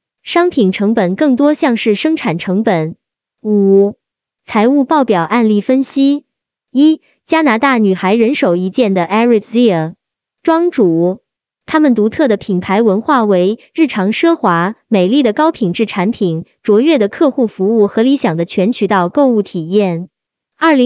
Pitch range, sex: 195-275 Hz, male